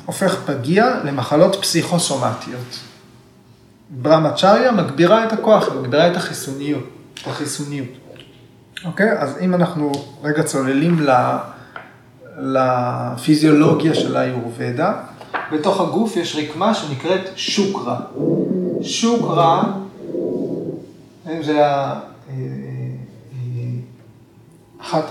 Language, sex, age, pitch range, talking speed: Hebrew, male, 30-49, 130-180 Hz, 80 wpm